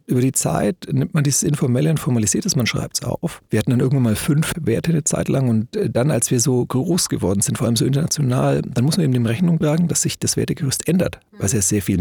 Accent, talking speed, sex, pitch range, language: German, 260 wpm, male, 115-150 Hz, German